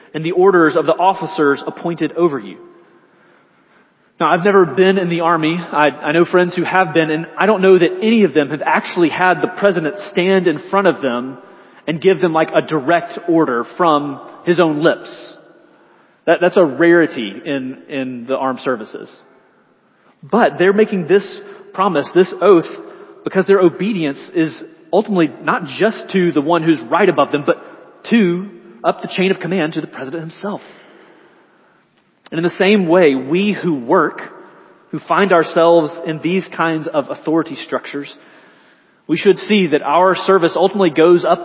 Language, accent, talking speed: English, American, 170 wpm